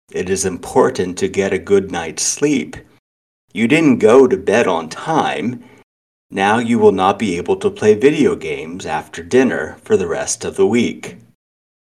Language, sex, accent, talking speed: English, male, American, 175 wpm